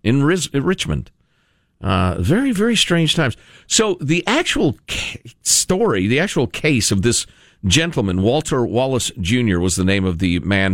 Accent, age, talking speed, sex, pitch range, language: American, 50-69, 160 wpm, male, 95-140 Hz, English